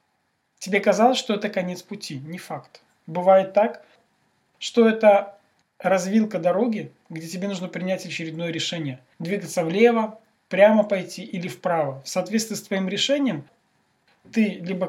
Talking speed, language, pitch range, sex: 135 wpm, Russian, 175-220 Hz, male